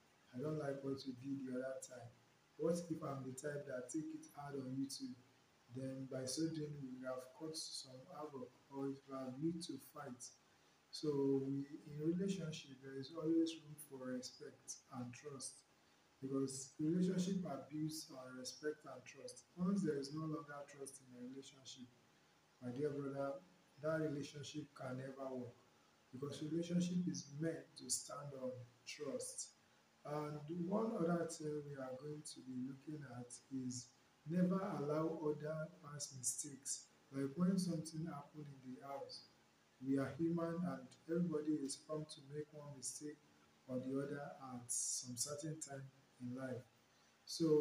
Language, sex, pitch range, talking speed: English, male, 130-155 Hz, 155 wpm